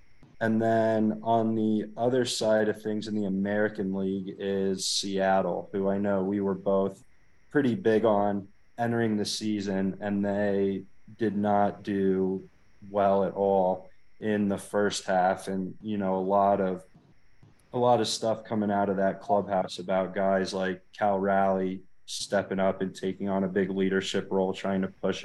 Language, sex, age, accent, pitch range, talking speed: English, male, 20-39, American, 95-105 Hz, 165 wpm